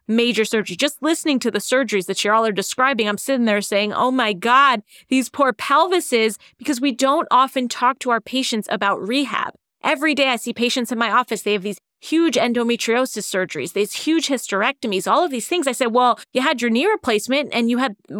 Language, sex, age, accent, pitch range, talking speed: English, female, 30-49, American, 215-275 Hz, 210 wpm